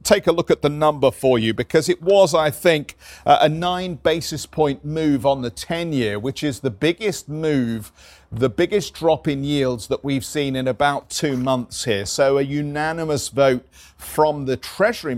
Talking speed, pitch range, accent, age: 185 wpm, 115-150 Hz, British, 50-69